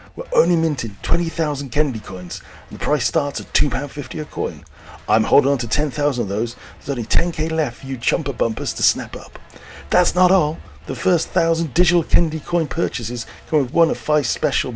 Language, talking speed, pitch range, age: English, 195 wpm, 100-160 Hz, 40-59